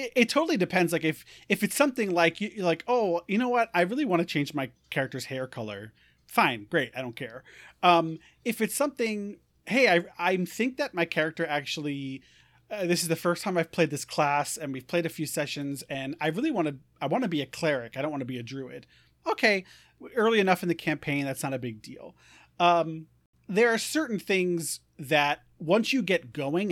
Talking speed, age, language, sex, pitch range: 215 wpm, 30-49, English, male, 135-185 Hz